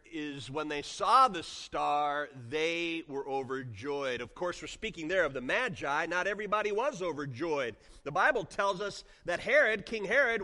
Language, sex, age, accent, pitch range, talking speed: English, male, 30-49, American, 150-235 Hz, 165 wpm